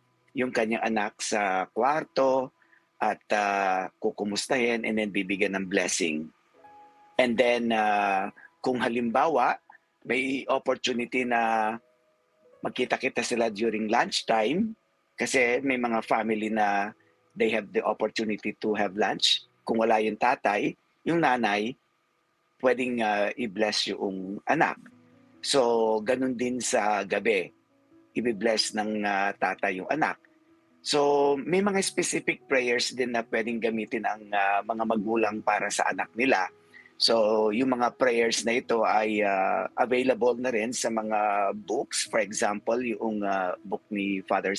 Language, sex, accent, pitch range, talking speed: Filipino, male, native, 105-130 Hz, 130 wpm